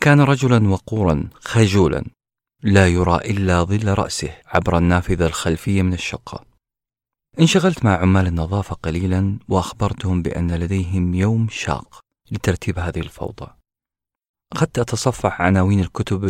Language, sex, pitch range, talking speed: Arabic, male, 85-110 Hz, 115 wpm